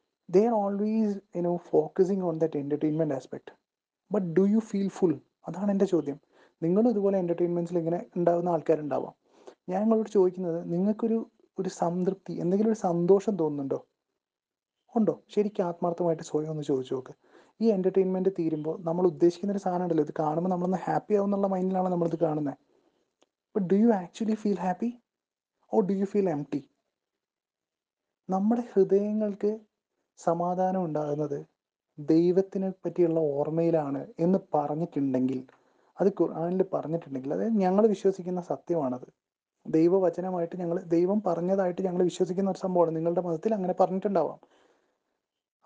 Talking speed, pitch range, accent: 150 wpm, 160-195 Hz, native